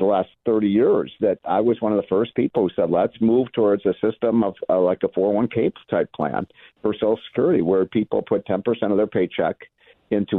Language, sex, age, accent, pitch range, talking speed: English, male, 50-69, American, 100-130 Hz, 220 wpm